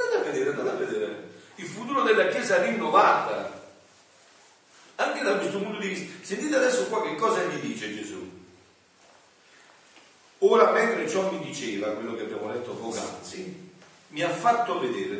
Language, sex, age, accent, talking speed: Italian, male, 50-69, native, 155 wpm